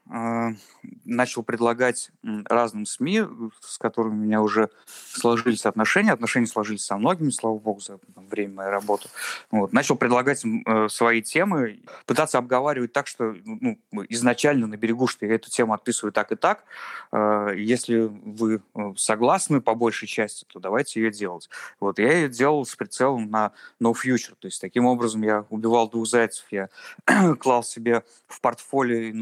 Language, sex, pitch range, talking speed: Russian, male, 110-125 Hz, 150 wpm